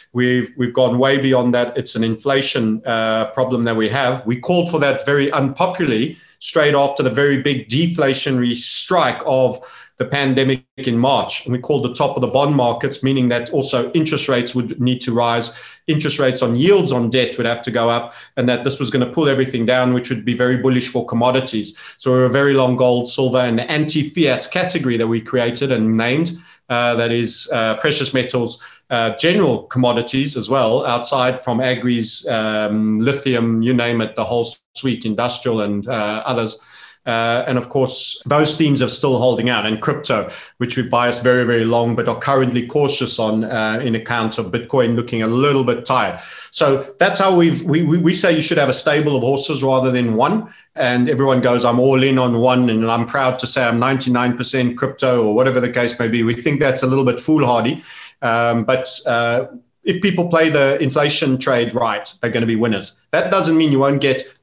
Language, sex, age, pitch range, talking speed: English, male, 30-49, 120-140 Hz, 205 wpm